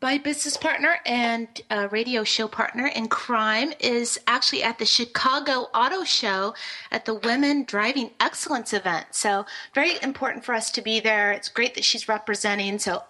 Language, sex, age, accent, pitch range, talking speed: English, female, 30-49, American, 220-280 Hz, 170 wpm